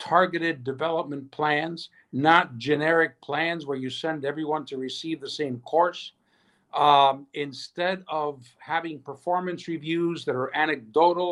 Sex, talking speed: male, 125 wpm